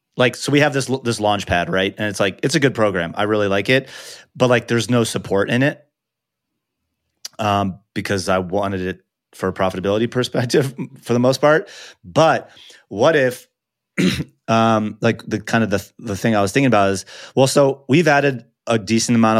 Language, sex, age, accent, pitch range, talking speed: English, male, 30-49, American, 95-115 Hz, 195 wpm